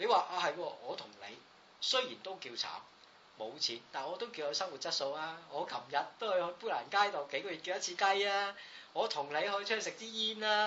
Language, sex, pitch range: Chinese, male, 175-270 Hz